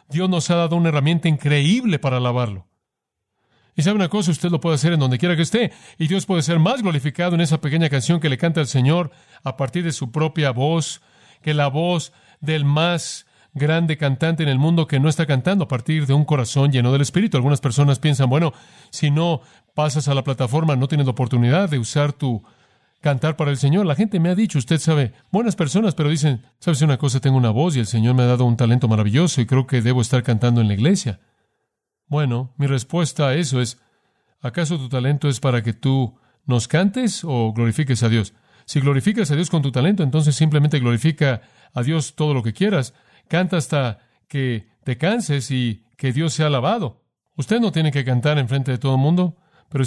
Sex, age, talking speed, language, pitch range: male, 40-59, 215 wpm, Spanish, 130-165 Hz